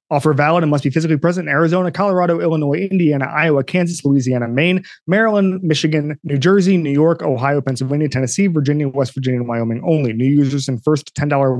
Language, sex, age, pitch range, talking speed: English, male, 30-49, 130-170 Hz, 185 wpm